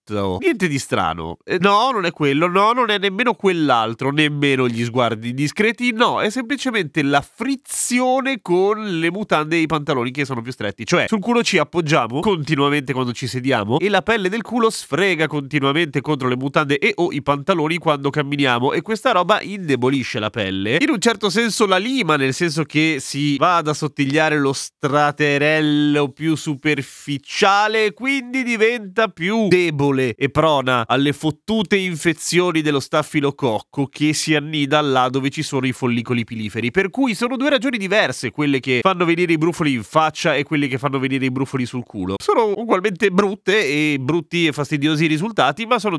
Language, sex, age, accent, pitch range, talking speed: Italian, male, 30-49, native, 140-195 Hz, 175 wpm